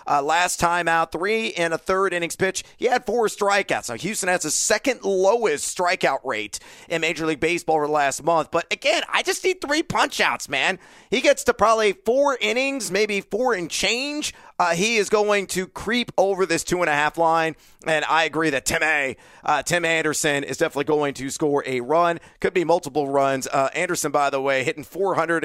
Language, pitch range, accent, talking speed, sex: English, 145-190 Hz, American, 200 wpm, male